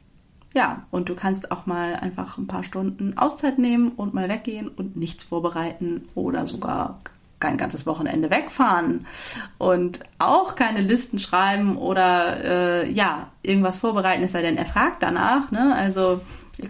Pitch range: 175-230 Hz